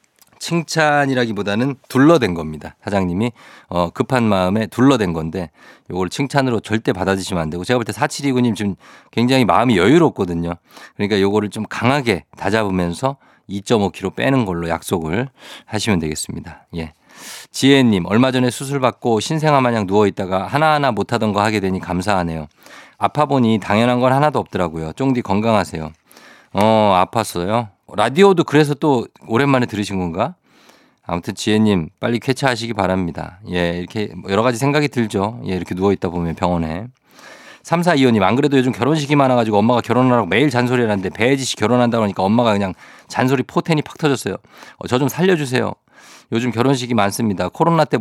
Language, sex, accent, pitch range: Korean, male, native, 95-135 Hz